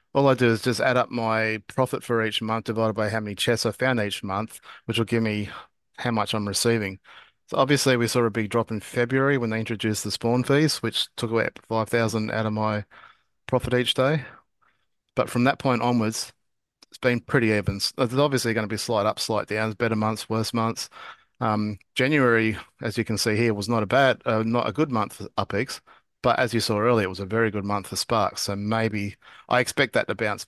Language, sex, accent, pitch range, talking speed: English, male, Australian, 105-125 Hz, 225 wpm